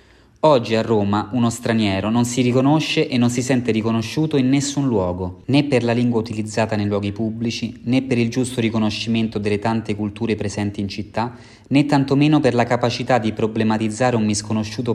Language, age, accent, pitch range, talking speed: Italian, 20-39, native, 105-120 Hz, 175 wpm